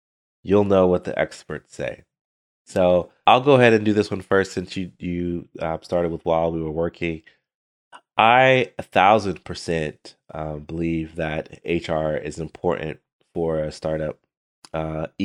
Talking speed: 145 wpm